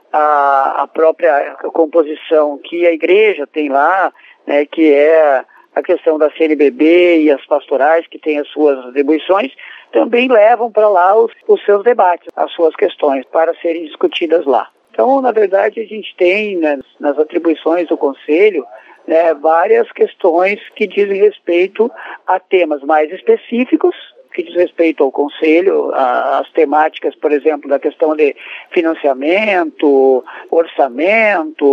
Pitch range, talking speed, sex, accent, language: 160-240 Hz, 140 wpm, male, Brazilian, Portuguese